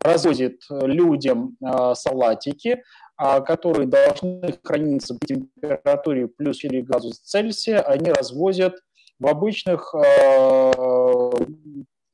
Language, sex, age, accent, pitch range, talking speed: Russian, male, 30-49, native, 135-195 Hz, 95 wpm